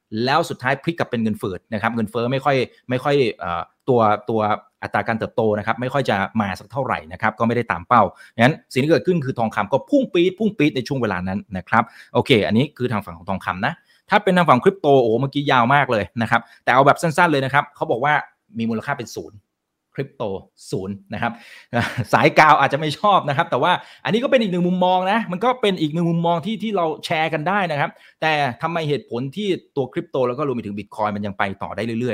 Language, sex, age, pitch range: Thai, male, 30-49, 110-155 Hz